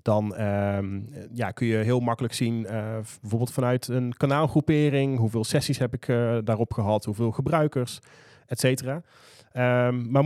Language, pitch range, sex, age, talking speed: Dutch, 110-135 Hz, male, 30-49, 145 wpm